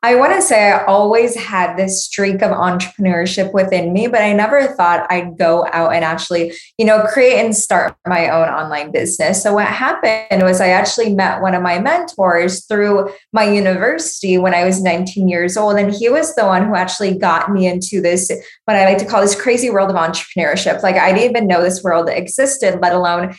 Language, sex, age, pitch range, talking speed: English, female, 20-39, 180-215 Hz, 210 wpm